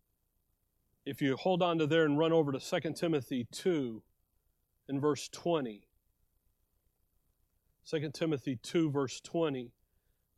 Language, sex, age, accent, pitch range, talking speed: English, male, 40-59, American, 115-170 Hz, 125 wpm